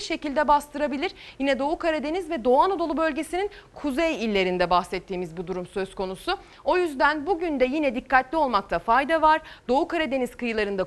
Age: 30-49